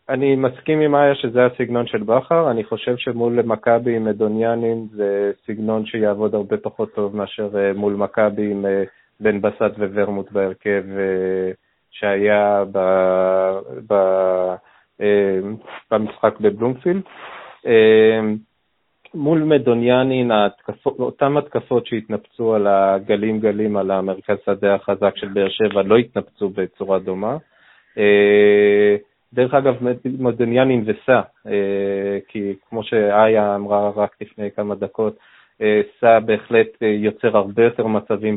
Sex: male